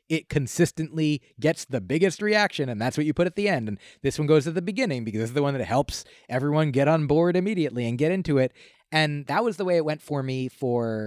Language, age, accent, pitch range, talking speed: English, 30-49, American, 120-160 Hz, 255 wpm